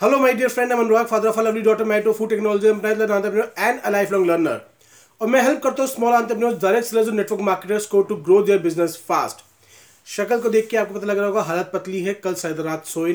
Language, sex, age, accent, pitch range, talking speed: Hindi, male, 30-49, native, 175-230 Hz, 140 wpm